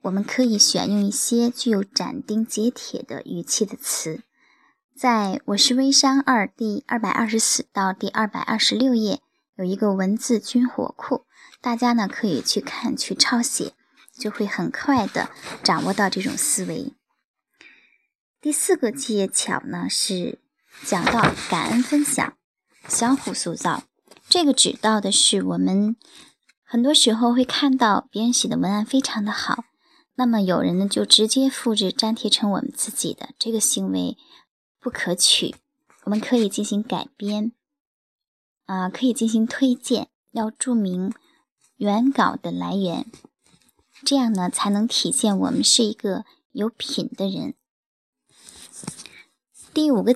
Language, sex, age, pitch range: Chinese, male, 10-29, 210-265 Hz